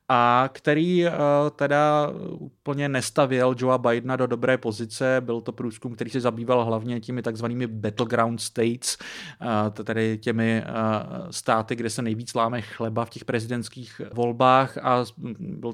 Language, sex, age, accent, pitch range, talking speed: Czech, male, 30-49, native, 115-130 Hz, 135 wpm